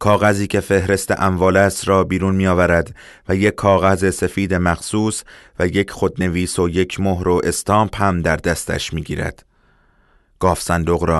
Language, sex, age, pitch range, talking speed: Persian, male, 30-49, 85-100 Hz, 155 wpm